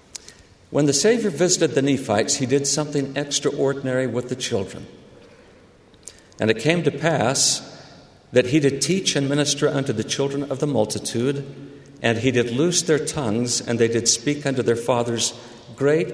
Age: 50-69